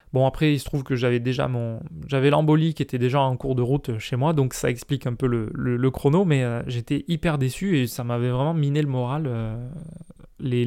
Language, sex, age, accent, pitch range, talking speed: French, male, 20-39, French, 125-150 Hz, 240 wpm